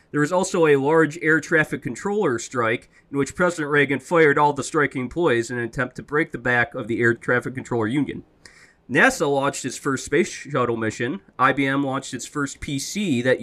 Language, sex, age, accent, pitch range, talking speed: English, male, 20-39, American, 120-155 Hz, 195 wpm